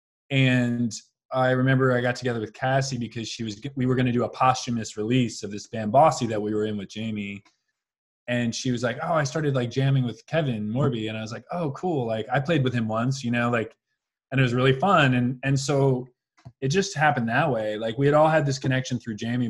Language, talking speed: English, 240 wpm